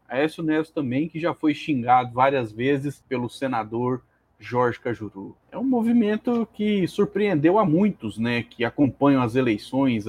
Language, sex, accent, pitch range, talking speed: Portuguese, male, Brazilian, 125-170 Hz, 150 wpm